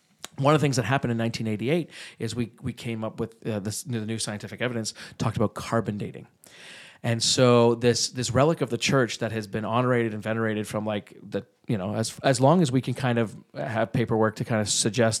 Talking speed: 230 wpm